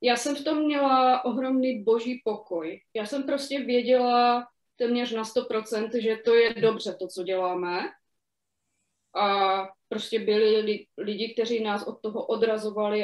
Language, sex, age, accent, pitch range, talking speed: Czech, female, 20-39, native, 210-250 Hz, 145 wpm